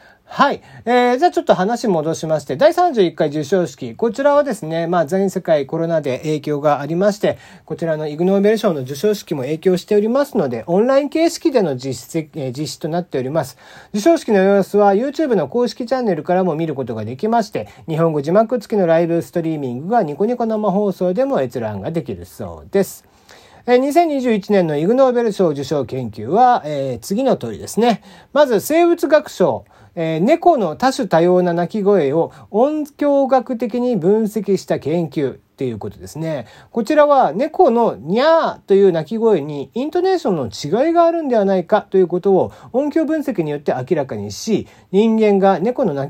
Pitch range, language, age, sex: 155-245 Hz, Japanese, 40-59, male